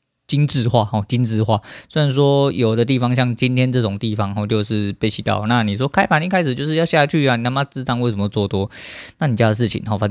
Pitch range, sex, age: 100-120 Hz, male, 20-39